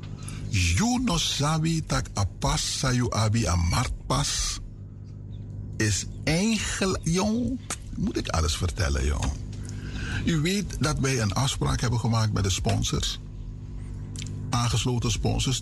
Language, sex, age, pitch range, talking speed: Dutch, male, 60-79, 100-120 Hz, 105 wpm